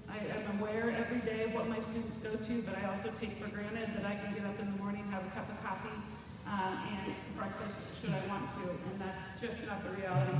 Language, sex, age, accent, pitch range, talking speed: English, female, 30-49, American, 185-220 Hz, 250 wpm